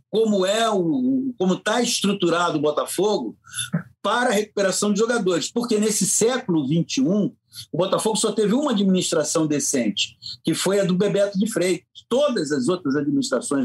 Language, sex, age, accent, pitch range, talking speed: Portuguese, male, 50-69, Brazilian, 160-250 Hz, 145 wpm